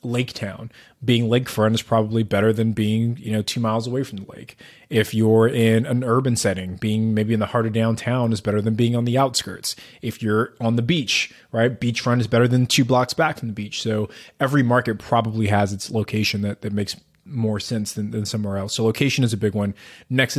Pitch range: 105-125 Hz